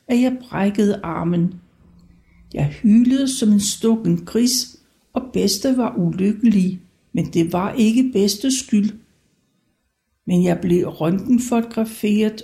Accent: native